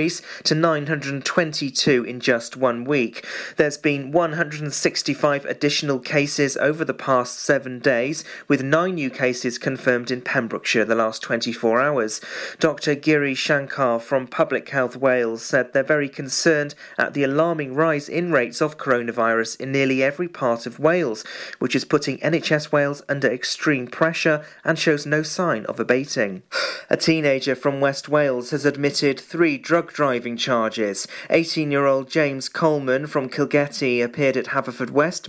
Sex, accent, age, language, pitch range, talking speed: male, British, 40-59, English, 130-155 Hz, 145 wpm